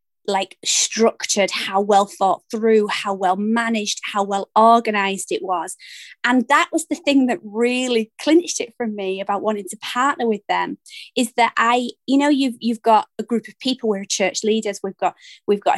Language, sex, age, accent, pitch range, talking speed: English, female, 20-39, British, 205-245 Hz, 190 wpm